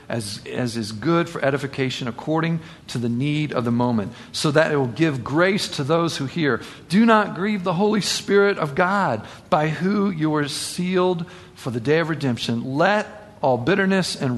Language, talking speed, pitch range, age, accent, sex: English, 190 wpm, 125-165 Hz, 50-69, American, male